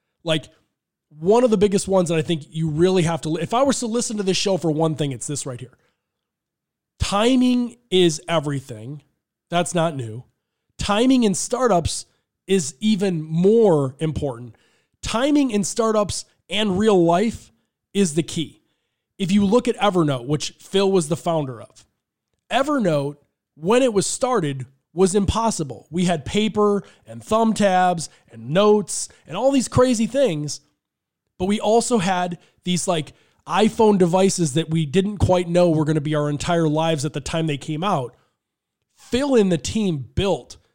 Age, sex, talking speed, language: 20-39, male, 165 wpm, English